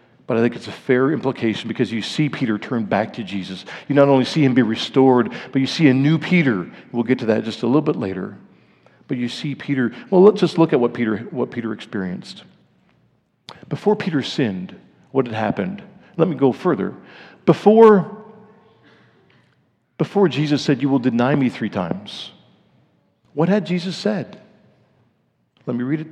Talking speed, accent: 180 wpm, American